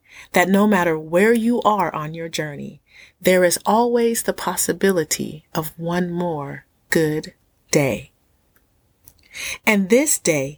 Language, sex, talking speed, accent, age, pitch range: English, female, 125 wpm, American, 30-49, 170-225 Hz